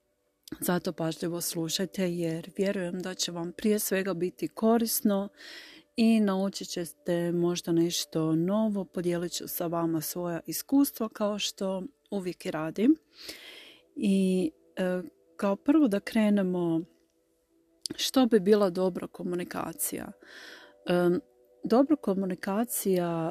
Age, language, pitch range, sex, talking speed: 40-59, Croatian, 165-200 Hz, female, 115 wpm